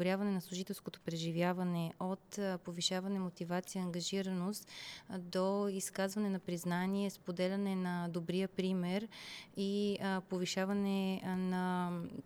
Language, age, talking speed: Bulgarian, 20-39, 90 wpm